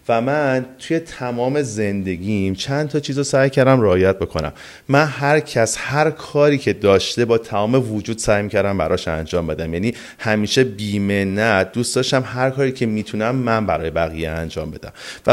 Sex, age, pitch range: male, 30-49, 95-130 Hz